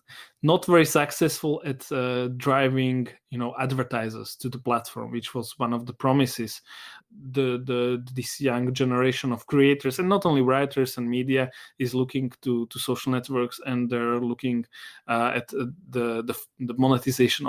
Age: 20-39